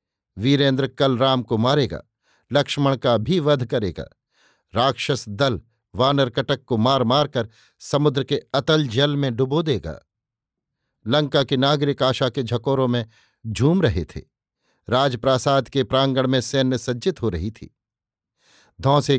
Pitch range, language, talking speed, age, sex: 115-140 Hz, Hindi, 140 wpm, 50-69, male